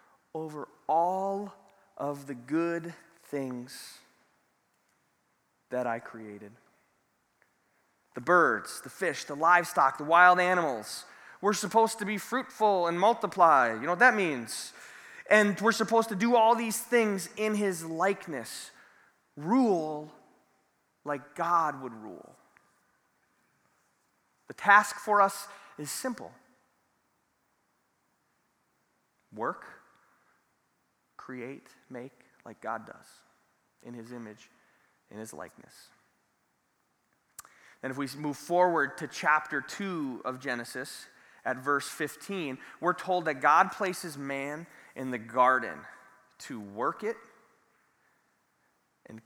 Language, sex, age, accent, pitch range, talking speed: English, male, 30-49, American, 135-200 Hz, 110 wpm